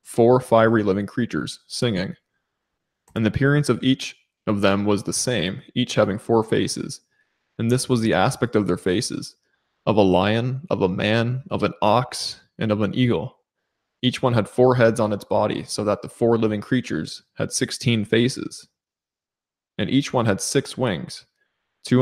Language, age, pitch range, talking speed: English, 20-39, 105-125 Hz, 175 wpm